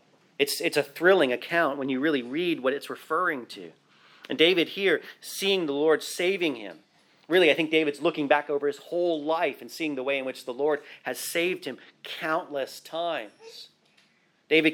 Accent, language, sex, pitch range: American, English, male, 145-175 Hz